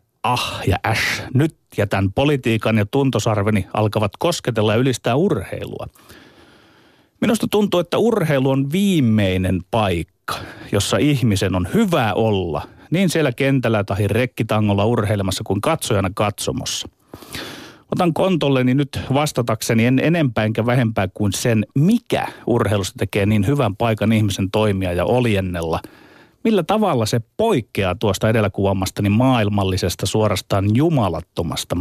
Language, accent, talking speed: Finnish, native, 120 wpm